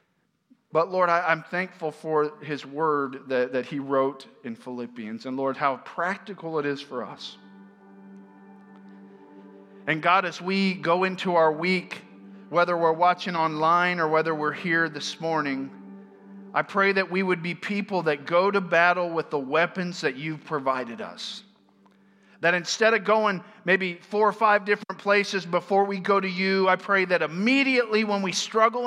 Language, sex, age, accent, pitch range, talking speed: English, male, 40-59, American, 140-195 Hz, 165 wpm